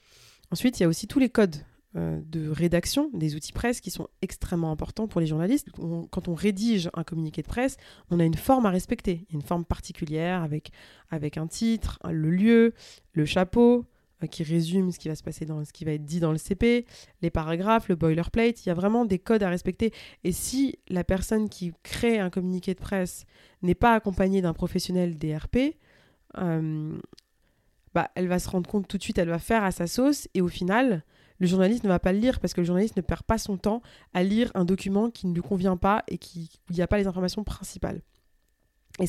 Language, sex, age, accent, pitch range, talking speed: French, female, 20-39, French, 165-205 Hz, 220 wpm